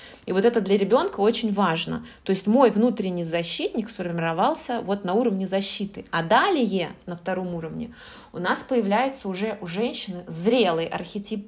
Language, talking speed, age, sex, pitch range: Russian, 155 wpm, 20-39, female, 185-235 Hz